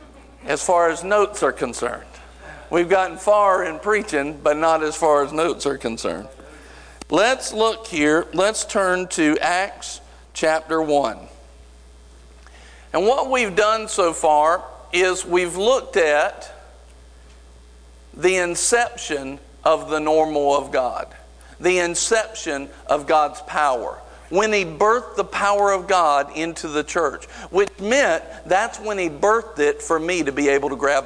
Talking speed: 145 wpm